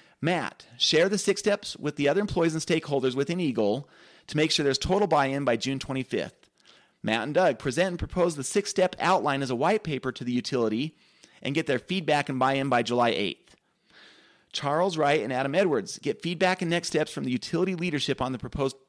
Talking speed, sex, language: 205 wpm, male, English